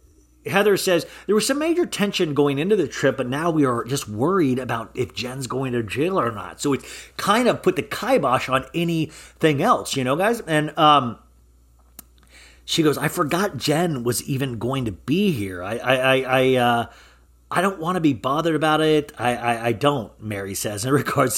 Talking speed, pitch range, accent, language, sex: 200 wpm, 115-150 Hz, American, English, male